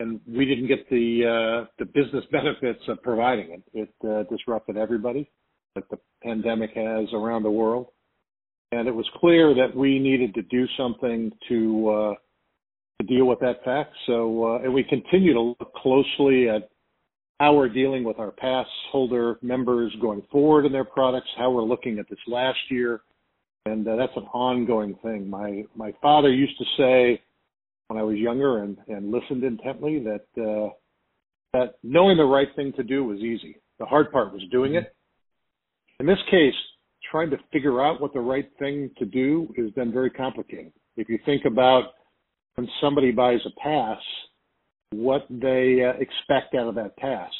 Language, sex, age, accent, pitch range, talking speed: English, male, 50-69, American, 115-135 Hz, 175 wpm